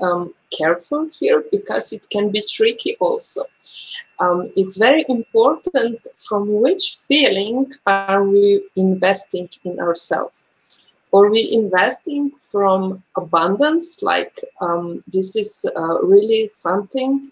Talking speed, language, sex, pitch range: 115 wpm, English, female, 185-270 Hz